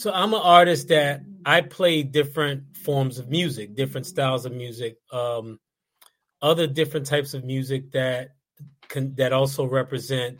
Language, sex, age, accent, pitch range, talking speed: English, male, 30-49, American, 125-150 Hz, 150 wpm